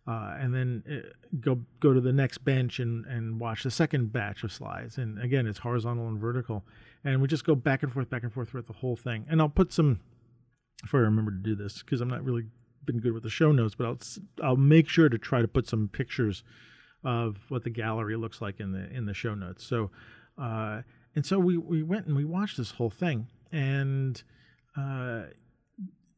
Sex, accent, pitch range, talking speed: male, American, 115-155 Hz, 220 wpm